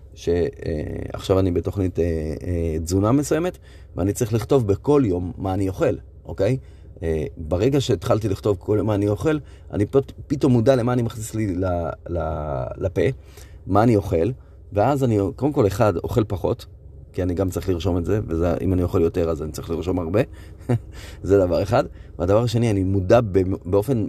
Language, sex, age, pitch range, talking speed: Hebrew, male, 30-49, 90-125 Hz, 165 wpm